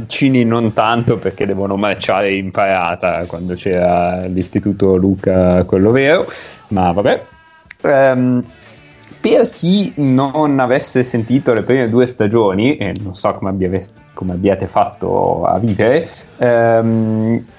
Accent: native